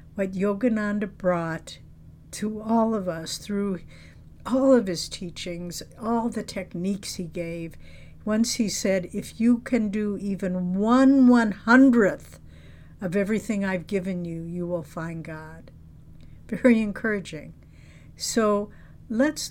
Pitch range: 170-200 Hz